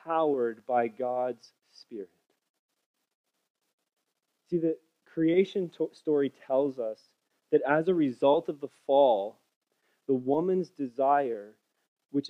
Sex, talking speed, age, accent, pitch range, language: male, 105 wpm, 30-49, American, 140-185 Hz, English